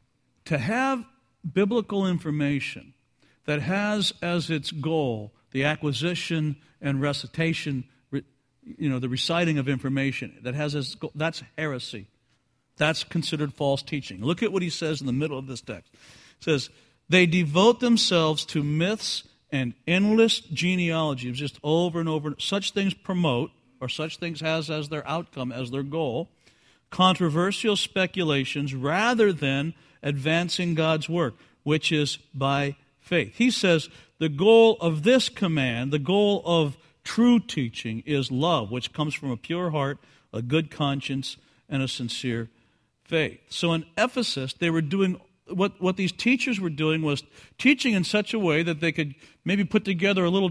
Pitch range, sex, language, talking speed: 145-185 Hz, male, English, 155 wpm